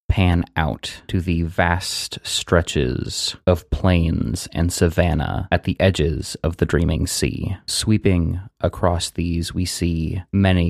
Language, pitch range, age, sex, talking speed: English, 85-95 Hz, 20-39, male, 130 wpm